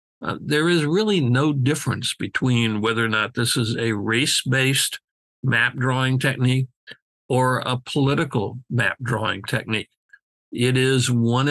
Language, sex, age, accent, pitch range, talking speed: English, male, 60-79, American, 115-140 Hz, 135 wpm